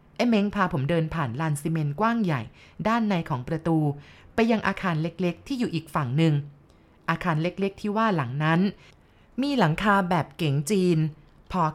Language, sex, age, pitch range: Thai, female, 20-39, 155-205 Hz